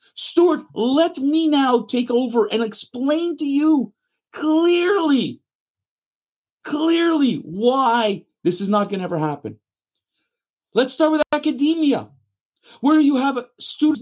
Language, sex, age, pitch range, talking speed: English, male, 50-69, 245-330 Hz, 120 wpm